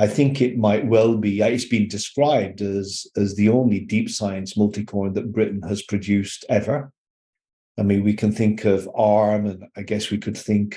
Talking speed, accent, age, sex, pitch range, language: 190 wpm, British, 40-59, male, 100-110 Hz, English